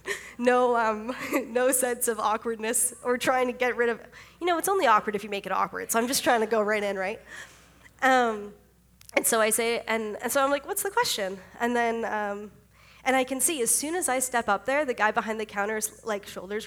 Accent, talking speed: American, 235 wpm